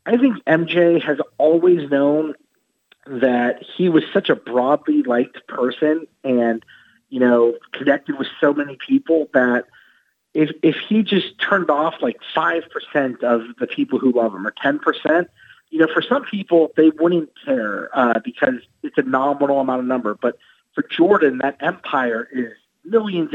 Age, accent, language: 30-49, American, English